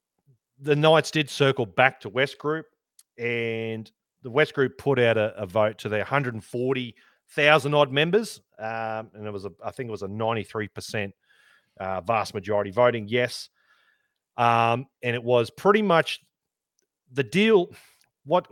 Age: 40-59